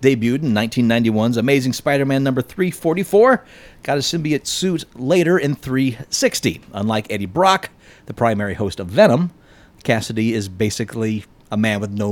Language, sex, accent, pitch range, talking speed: English, male, American, 110-170 Hz, 145 wpm